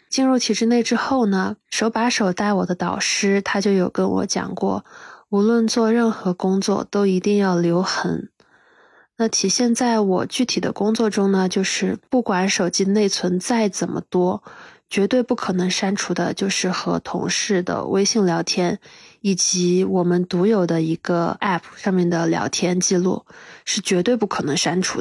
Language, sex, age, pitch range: Chinese, female, 20-39, 185-225 Hz